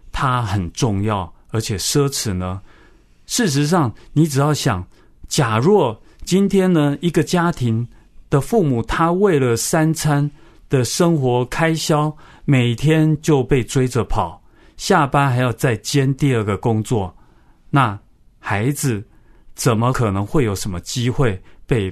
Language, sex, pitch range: Chinese, male, 100-145 Hz